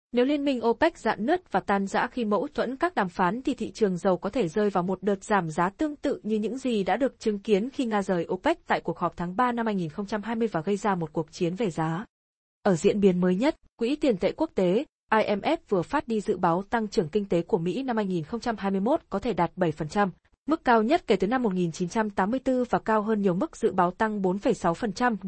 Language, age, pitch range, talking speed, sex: Vietnamese, 20-39, 185-235 Hz, 235 wpm, female